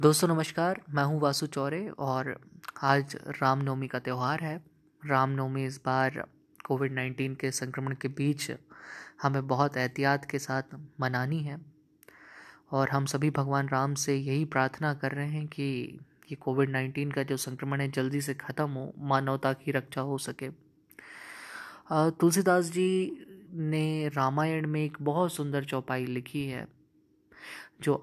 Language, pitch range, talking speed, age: Hindi, 135-150 Hz, 145 wpm, 20-39